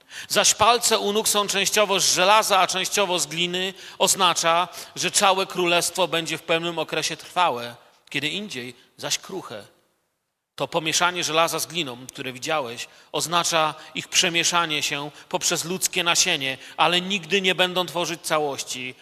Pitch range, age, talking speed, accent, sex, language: 140-180 Hz, 40-59, 140 wpm, native, male, Polish